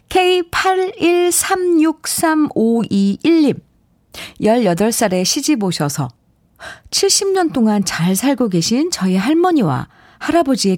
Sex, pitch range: female, 170-275 Hz